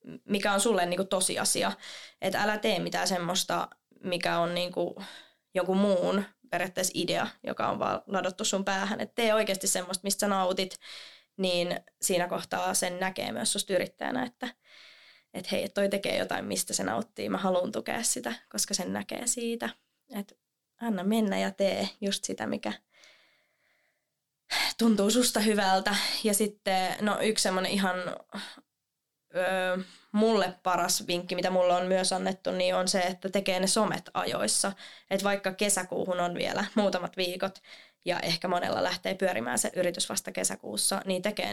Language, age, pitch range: Finnish, 20-39, 180-205 Hz